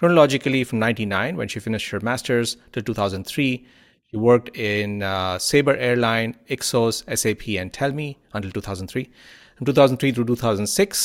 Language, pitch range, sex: English, 100-125 Hz, male